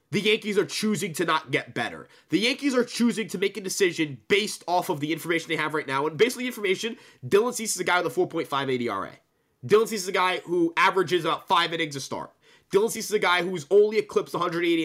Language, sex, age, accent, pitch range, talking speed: English, male, 20-39, American, 175-255 Hz, 250 wpm